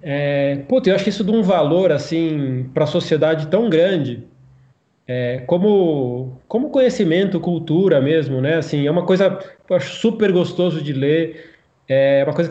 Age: 20-39